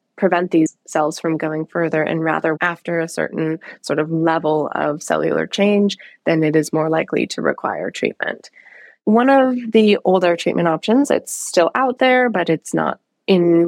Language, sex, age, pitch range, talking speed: English, female, 20-39, 160-215 Hz, 170 wpm